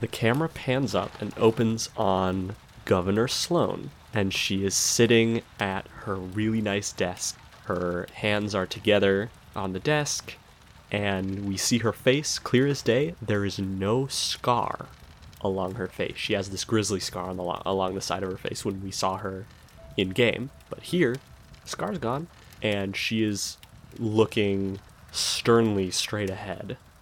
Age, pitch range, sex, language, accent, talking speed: 20-39, 95-115 Hz, male, English, American, 150 wpm